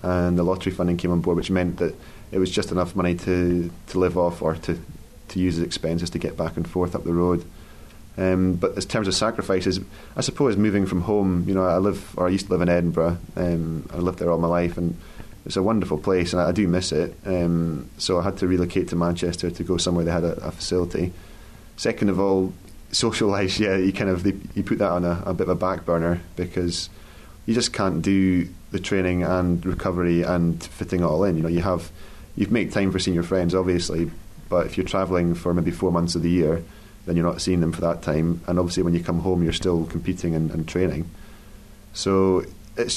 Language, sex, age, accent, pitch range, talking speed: English, male, 30-49, British, 85-95 Hz, 235 wpm